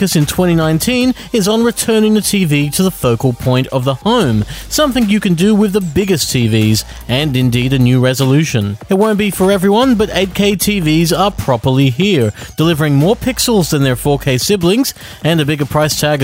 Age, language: 30-49, English